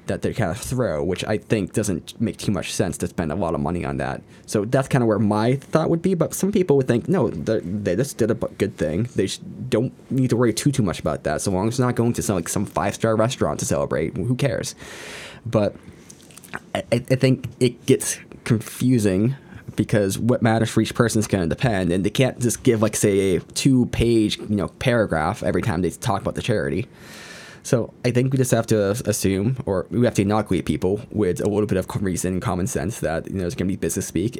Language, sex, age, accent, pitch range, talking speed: English, male, 20-39, American, 100-125 Hz, 240 wpm